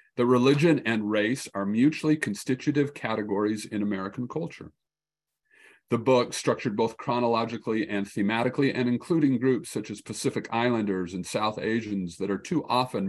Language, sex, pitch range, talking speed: English, male, 100-120 Hz, 145 wpm